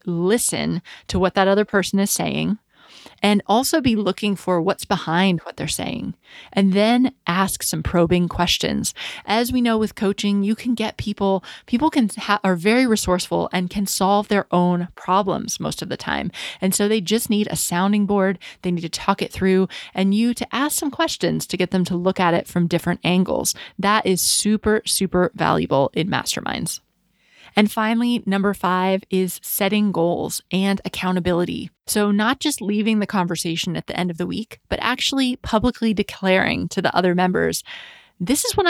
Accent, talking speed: American, 185 wpm